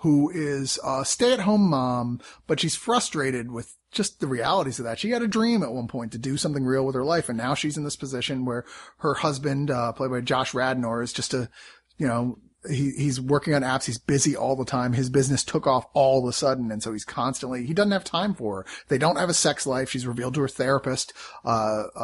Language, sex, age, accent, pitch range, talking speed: English, male, 30-49, American, 125-160 Hz, 240 wpm